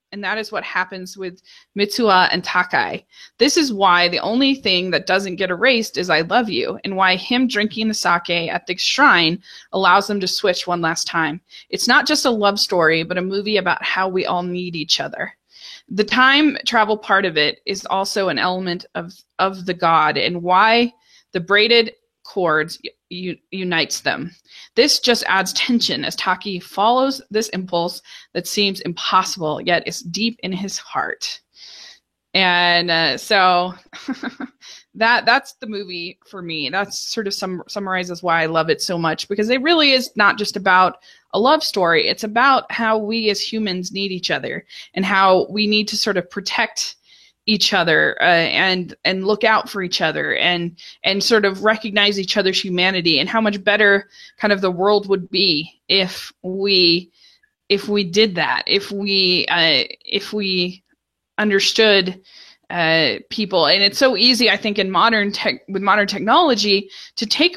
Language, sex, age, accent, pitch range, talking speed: English, female, 20-39, American, 180-220 Hz, 175 wpm